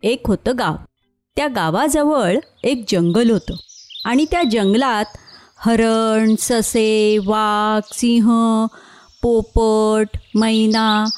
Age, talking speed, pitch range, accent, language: 30-49, 90 wpm, 200-275 Hz, native, Marathi